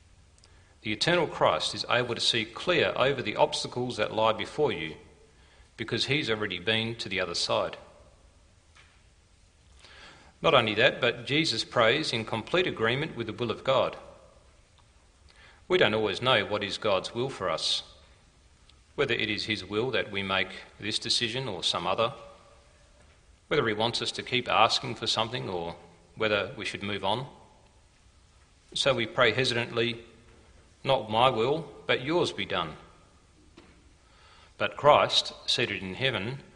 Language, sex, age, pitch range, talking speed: English, male, 40-59, 85-115 Hz, 150 wpm